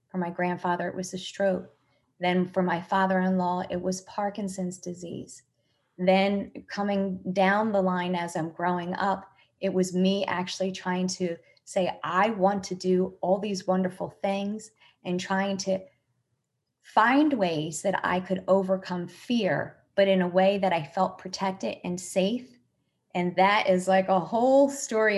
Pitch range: 180-200 Hz